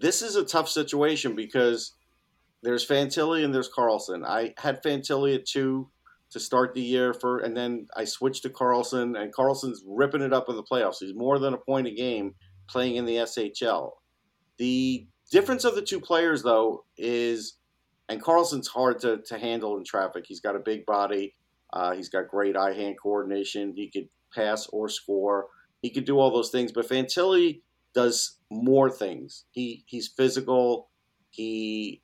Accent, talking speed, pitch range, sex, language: American, 180 wpm, 115-135 Hz, male, English